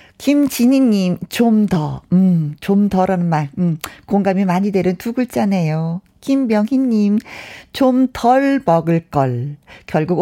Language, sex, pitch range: Korean, female, 175-255 Hz